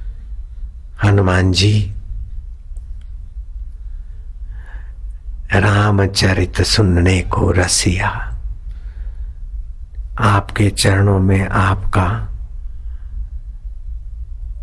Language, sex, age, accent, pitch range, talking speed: Hindi, male, 60-79, native, 85-100 Hz, 45 wpm